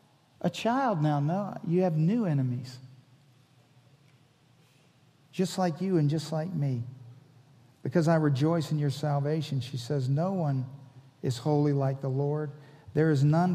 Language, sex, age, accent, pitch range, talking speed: English, male, 50-69, American, 130-170 Hz, 145 wpm